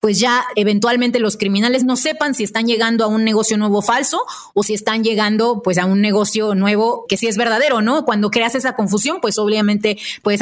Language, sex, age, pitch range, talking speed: Spanish, female, 30-49, 200-245 Hz, 205 wpm